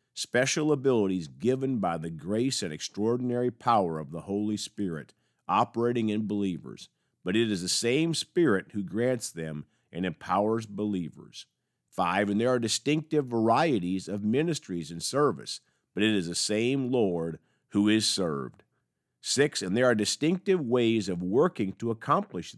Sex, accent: male, American